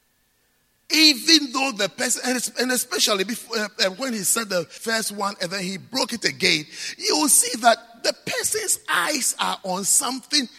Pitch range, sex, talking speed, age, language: 175-250 Hz, male, 170 wpm, 50-69, English